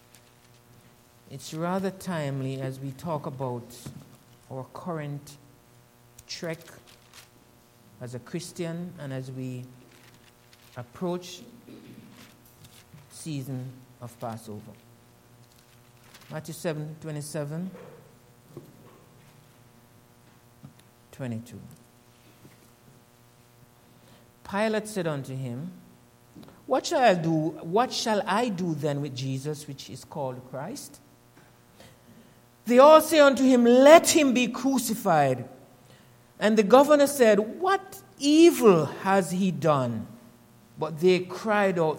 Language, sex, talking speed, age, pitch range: English, male, 95 wpm, 60-79, 120-195 Hz